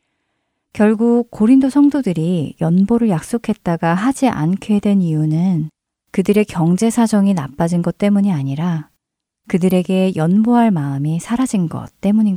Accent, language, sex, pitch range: native, Korean, female, 170-230 Hz